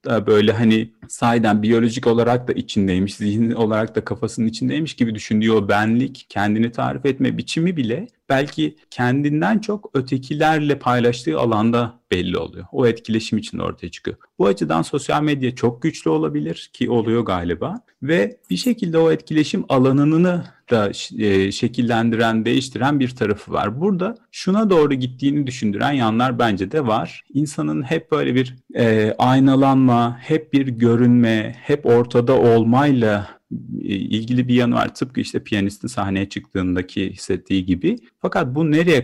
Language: Turkish